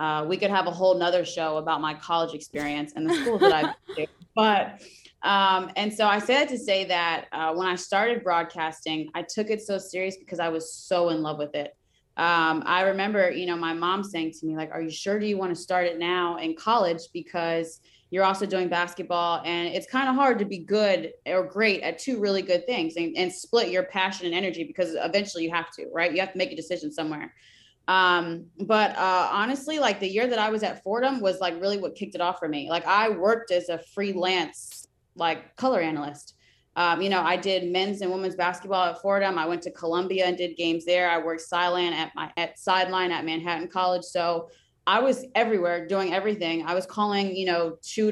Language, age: English, 20-39